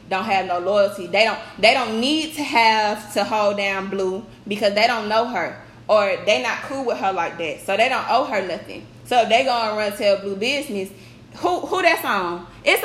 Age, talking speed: 20-39, 230 wpm